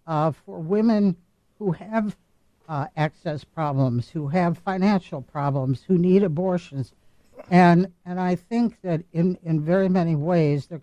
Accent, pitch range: American, 145-185 Hz